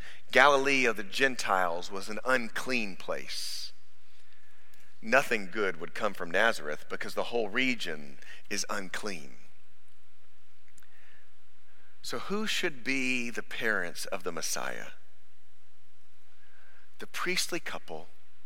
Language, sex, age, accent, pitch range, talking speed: English, male, 40-59, American, 90-120 Hz, 105 wpm